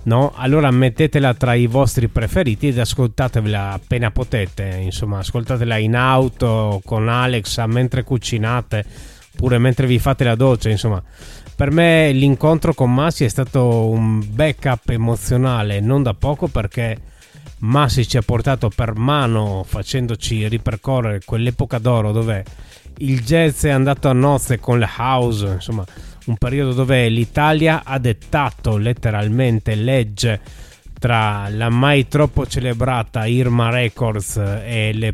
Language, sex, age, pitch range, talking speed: Italian, male, 30-49, 110-135 Hz, 135 wpm